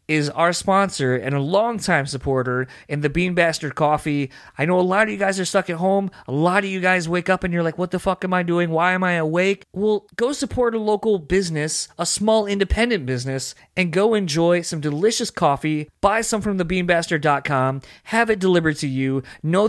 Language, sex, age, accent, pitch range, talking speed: English, male, 30-49, American, 145-185 Hz, 215 wpm